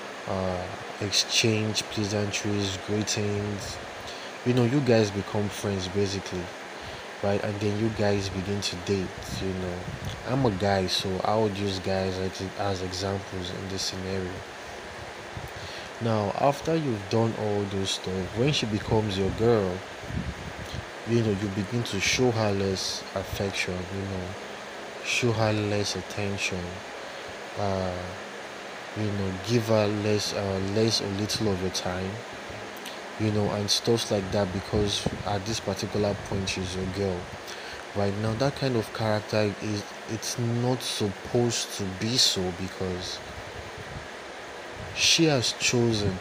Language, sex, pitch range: English, male, 95-110 Hz